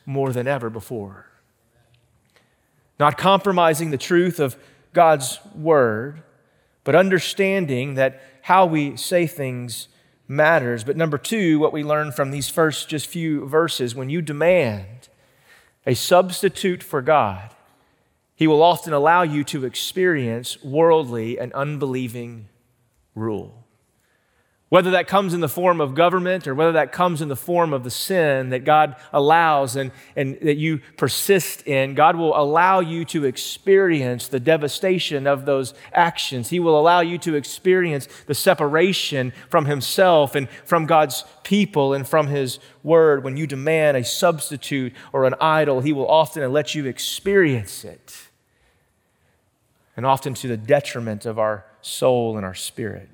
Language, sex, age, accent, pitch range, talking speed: English, male, 30-49, American, 125-165 Hz, 150 wpm